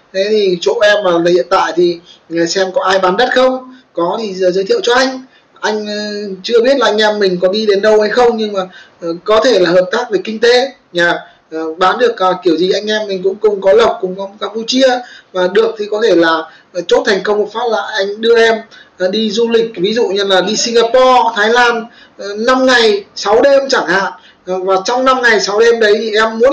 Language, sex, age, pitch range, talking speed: Vietnamese, male, 20-39, 180-235 Hz, 230 wpm